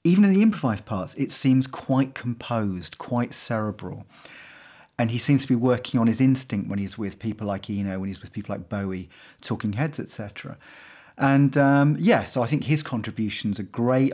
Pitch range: 110-135 Hz